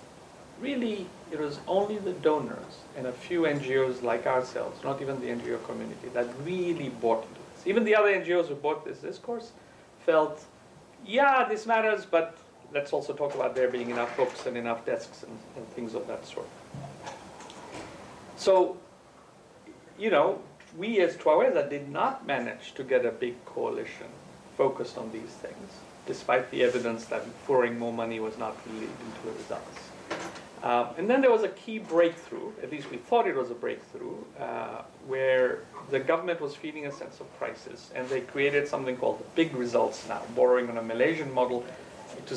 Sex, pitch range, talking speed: male, 125-200 Hz, 175 wpm